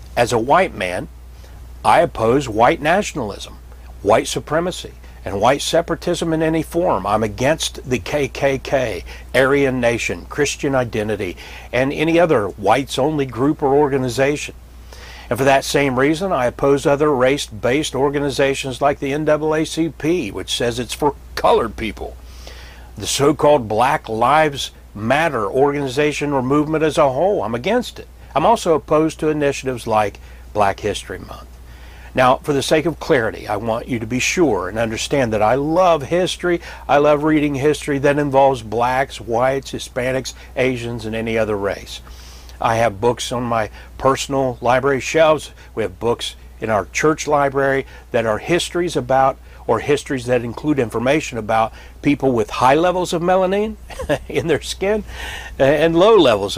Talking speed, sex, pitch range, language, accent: 150 wpm, male, 110-150 Hz, English, American